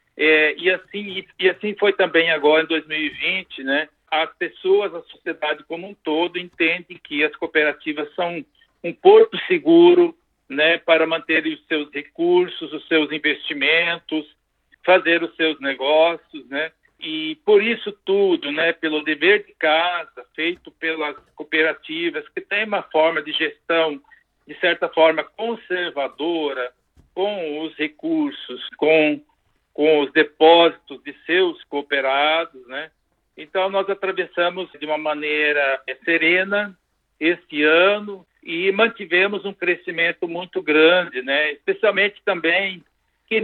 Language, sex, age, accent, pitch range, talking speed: Portuguese, male, 60-79, Brazilian, 155-190 Hz, 130 wpm